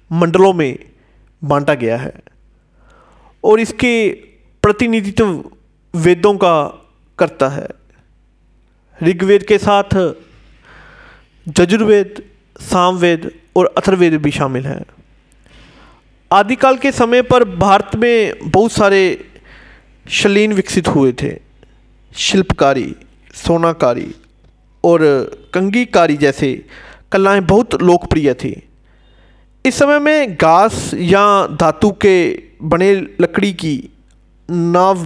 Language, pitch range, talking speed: Hindi, 145-205 Hz, 95 wpm